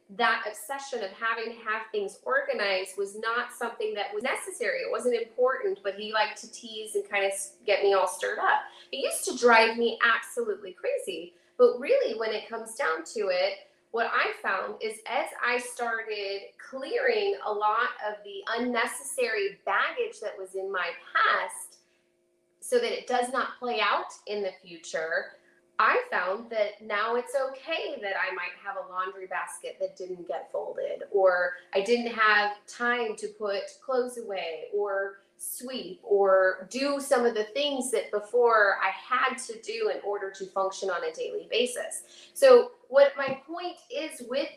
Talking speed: 170 wpm